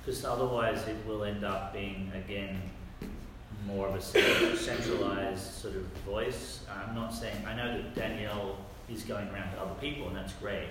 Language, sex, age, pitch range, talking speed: English, male, 40-59, 95-115 Hz, 175 wpm